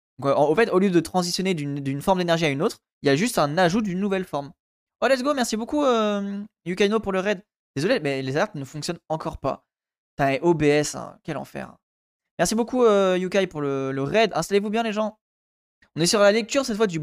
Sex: male